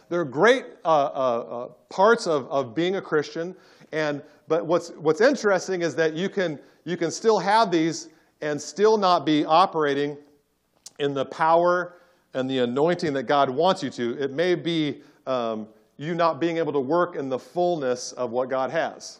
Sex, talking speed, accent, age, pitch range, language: male, 180 wpm, American, 50-69, 140-175 Hz, English